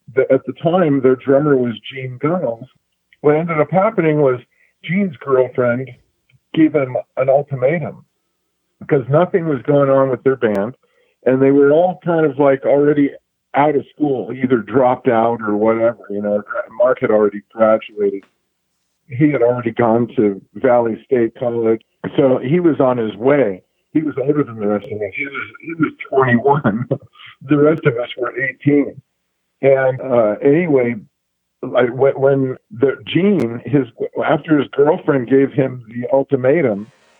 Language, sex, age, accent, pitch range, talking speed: English, male, 50-69, American, 125-155 Hz, 155 wpm